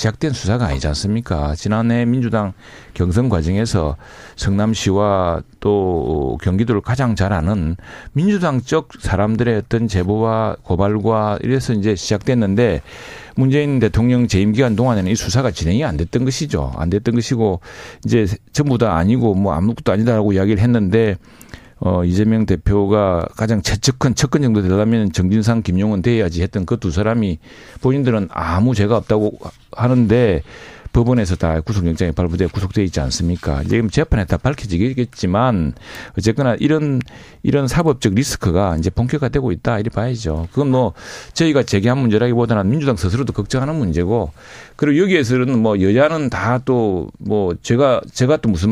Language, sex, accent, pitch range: Korean, male, native, 95-125 Hz